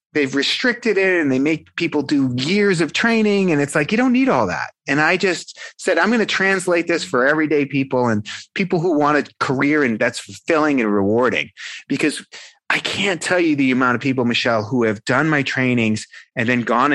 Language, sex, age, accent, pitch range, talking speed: English, male, 30-49, American, 130-195 Hz, 210 wpm